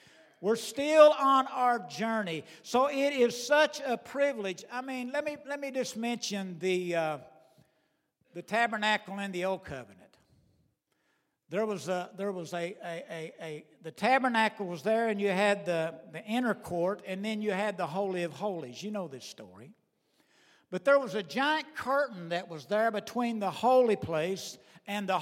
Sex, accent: male, American